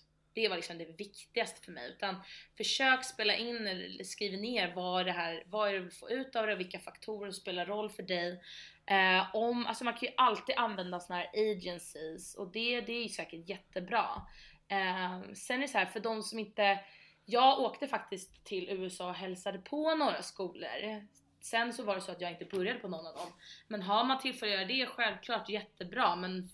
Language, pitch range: Swedish, 180-220 Hz